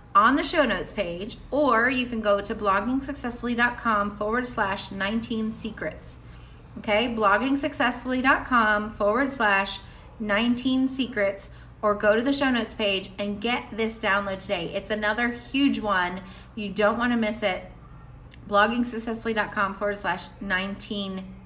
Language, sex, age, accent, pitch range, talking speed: English, female, 30-49, American, 200-250 Hz, 125 wpm